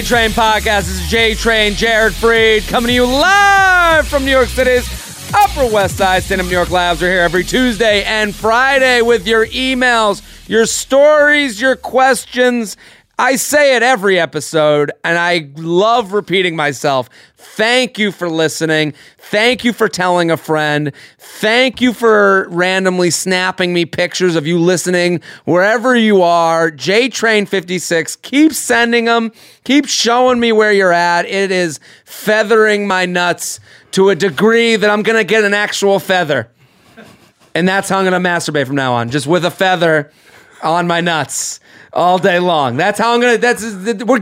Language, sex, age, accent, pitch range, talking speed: English, male, 30-49, American, 175-230 Hz, 165 wpm